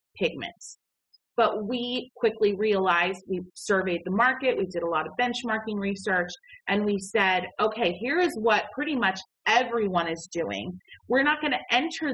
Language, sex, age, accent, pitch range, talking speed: English, female, 30-49, American, 180-240 Hz, 165 wpm